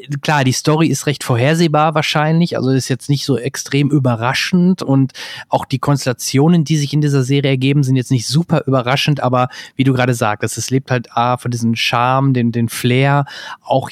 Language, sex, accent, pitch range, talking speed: German, male, German, 125-145 Hz, 190 wpm